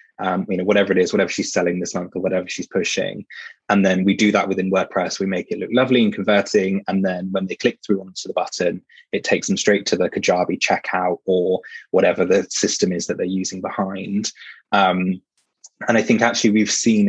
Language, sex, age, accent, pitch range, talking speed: English, male, 20-39, British, 95-105 Hz, 220 wpm